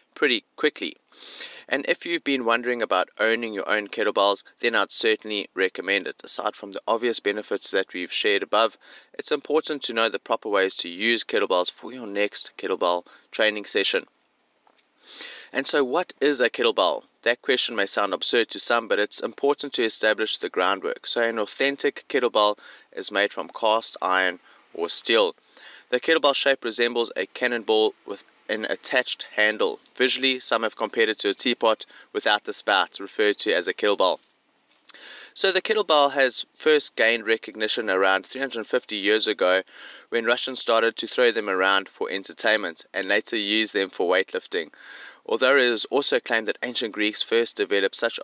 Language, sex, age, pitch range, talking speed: English, male, 30-49, 110-165 Hz, 170 wpm